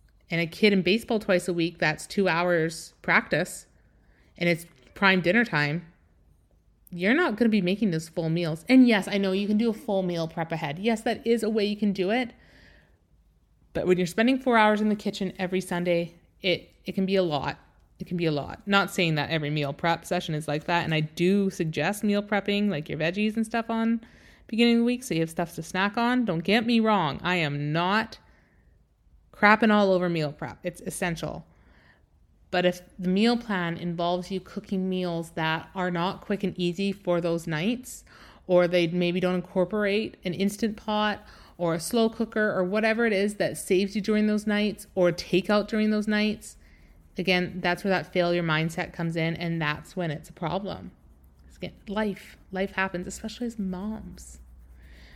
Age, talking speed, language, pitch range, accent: 30-49, 195 wpm, English, 165-210 Hz, American